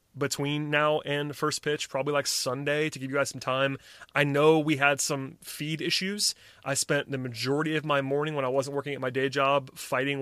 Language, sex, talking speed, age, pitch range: English, male, 215 wpm, 30-49, 135-160 Hz